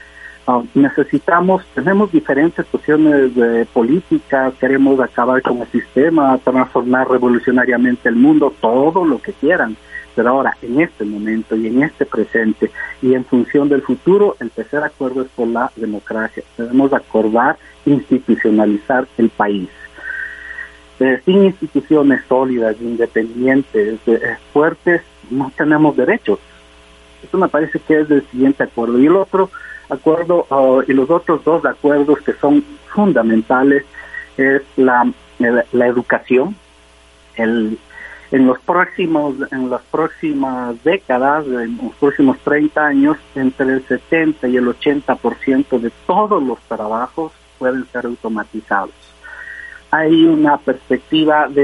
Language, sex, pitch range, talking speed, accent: Spanish, male, 120-150 Hz, 130 wpm, Mexican